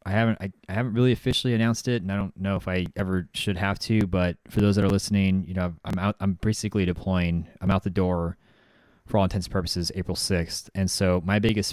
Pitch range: 90-100 Hz